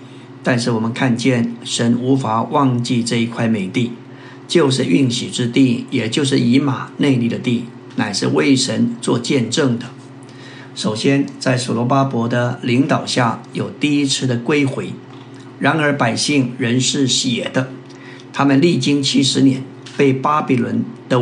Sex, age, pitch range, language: male, 50-69, 125-135 Hz, Chinese